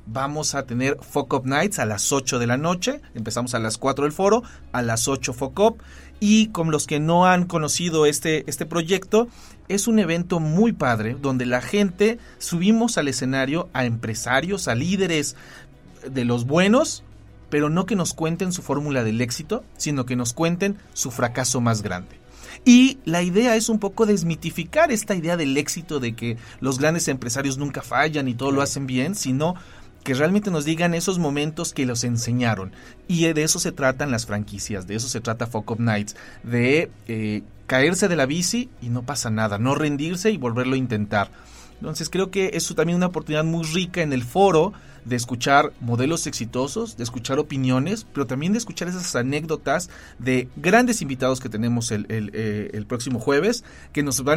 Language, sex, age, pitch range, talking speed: Spanish, male, 40-59, 125-175 Hz, 190 wpm